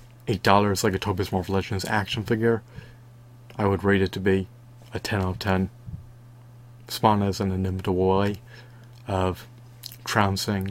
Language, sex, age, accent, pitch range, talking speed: English, male, 30-49, American, 100-120 Hz, 145 wpm